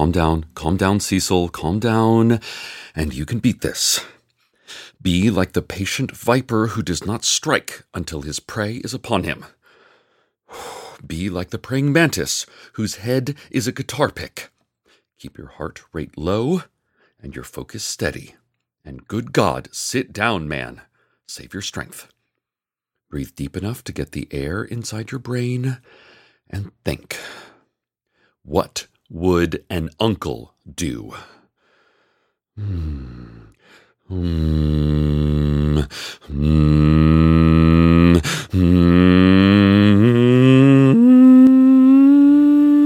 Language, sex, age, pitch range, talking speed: English, male, 40-59, 80-130 Hz, 105 wpm